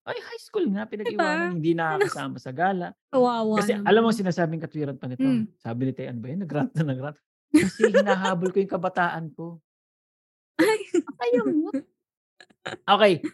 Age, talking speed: 20-39, 155 wpm